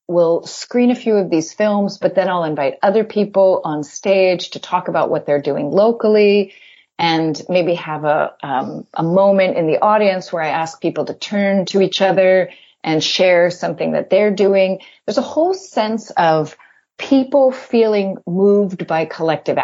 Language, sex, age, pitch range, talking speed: English, female, 40-59, 160-210 Hz, 175 wpm